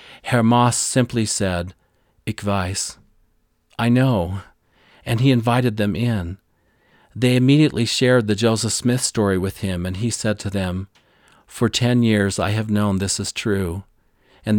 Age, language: 40-59, English